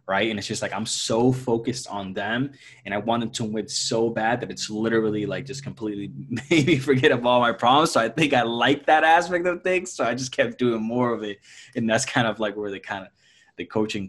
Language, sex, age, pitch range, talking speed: English, male, 20-39, 90-120 Hz, 245 wpm